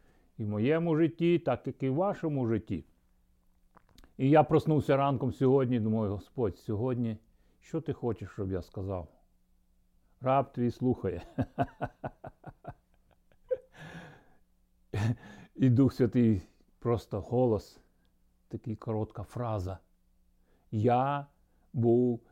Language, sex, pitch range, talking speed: Ukrainian, male, 95-135 Hz, 100 wpm